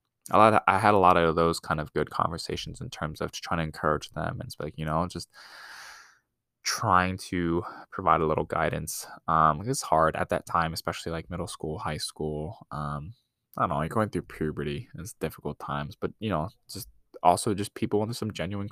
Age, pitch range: 10-29, 75-90 Hz